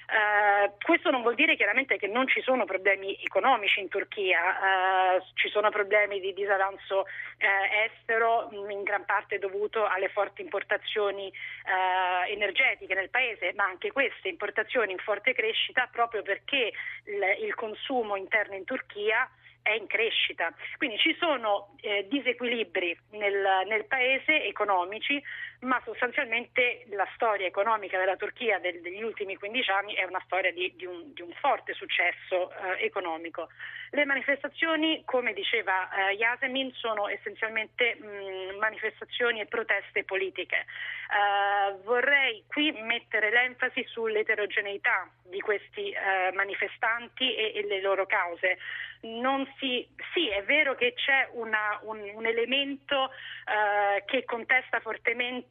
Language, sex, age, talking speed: Italian, female, 30-49, 130 wpm